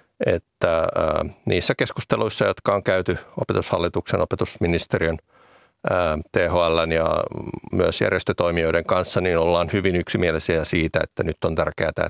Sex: male